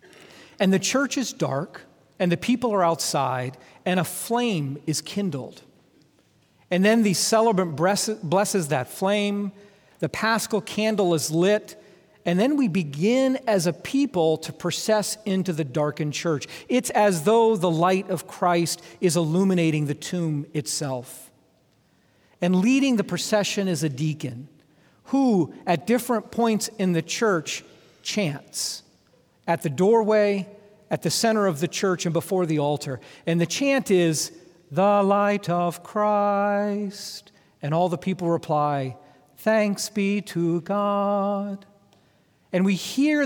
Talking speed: 140 wpm